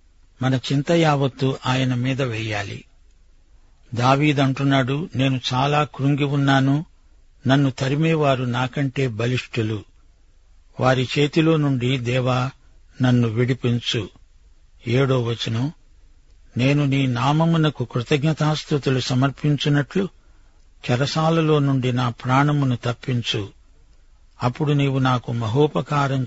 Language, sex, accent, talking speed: Telugu, male, native, 85 wpm